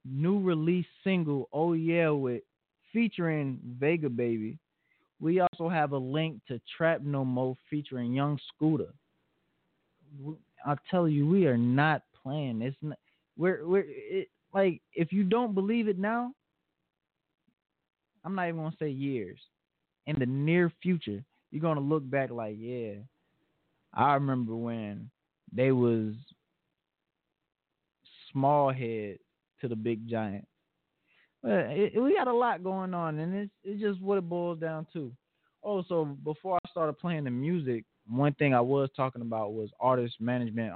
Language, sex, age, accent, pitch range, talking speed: English, male, 20-39, American, 125-170 Hz, 145 wpm